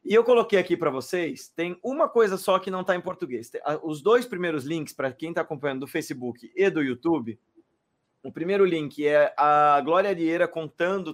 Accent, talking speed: Brazilian, 195 wpm